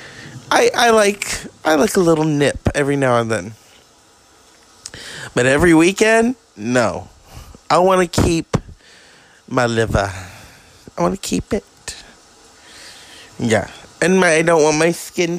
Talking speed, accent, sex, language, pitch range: 135 wpm, American, male, English, 115-170 Hz